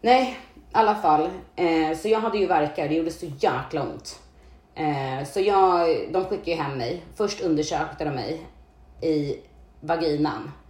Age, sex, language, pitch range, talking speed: 30-49, female, English, 150-200 Hz, 155 wpm